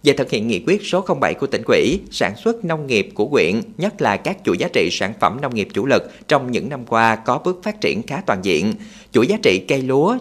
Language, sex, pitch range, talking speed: Vietnamese, male, 120-185 Hz, 260 wpm